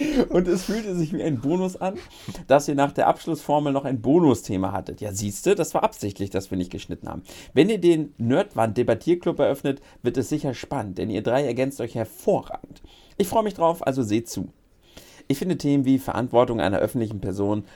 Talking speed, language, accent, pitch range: 195 wpm, German, German, 105-150 Hz